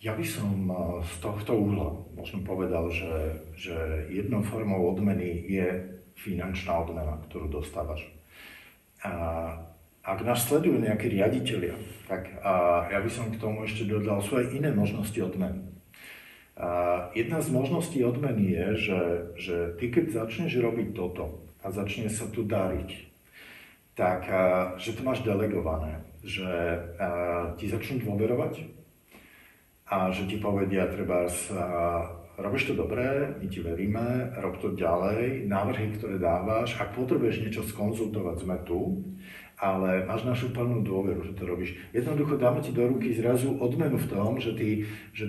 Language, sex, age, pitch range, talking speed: Slovak, male, 50-69, 90-115 Hz, 145 wpm